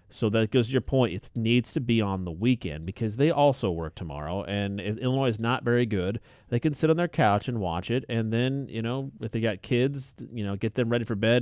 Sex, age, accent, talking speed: male, 30-49, American, 260 wpm